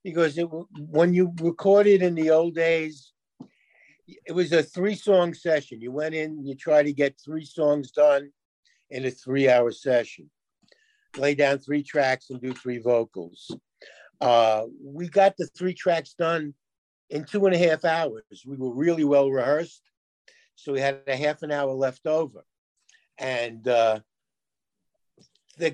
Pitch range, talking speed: 135-170 Hz, 155 wpm